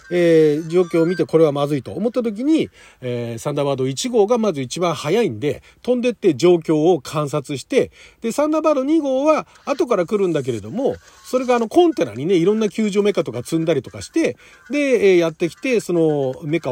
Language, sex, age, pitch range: Japanese, male, 40-59, 145-235 Hz